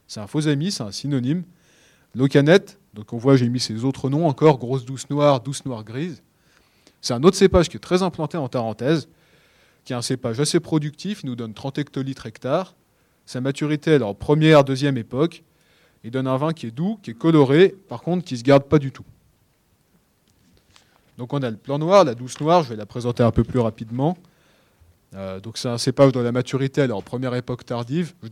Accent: French